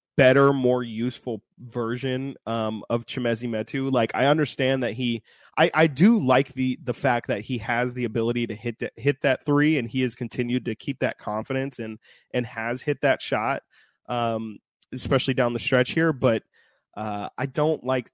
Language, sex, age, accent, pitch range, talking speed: English, male, 20-39, American, 110-135 Hz, 180 wpm